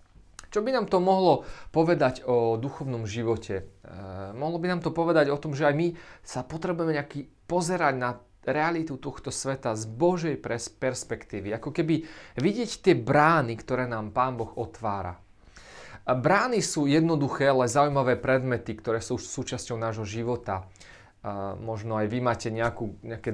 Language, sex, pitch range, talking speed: Slovak, male, 115-155 Hz, 150 wpm